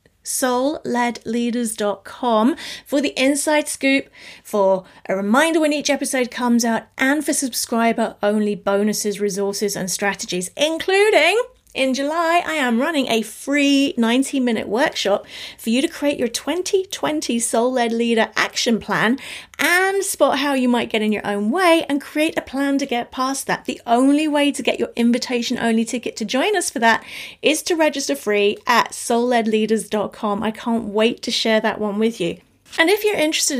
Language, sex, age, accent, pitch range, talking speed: English, female, 30-49, British, 210-275 Hz, 165 wpm